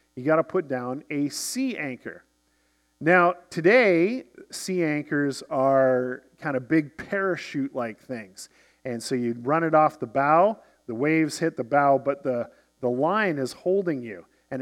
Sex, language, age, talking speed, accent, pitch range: male, English, 40-59, 155 wpm, American, 135-190 Hz